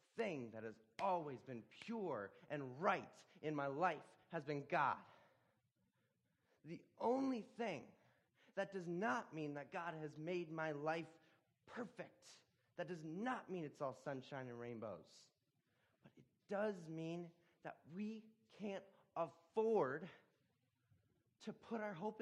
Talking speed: 130 wpm